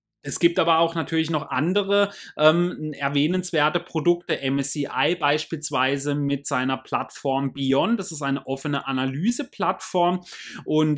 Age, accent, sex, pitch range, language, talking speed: 30-49, German, male, 135-170 Hz, German, 120 wpm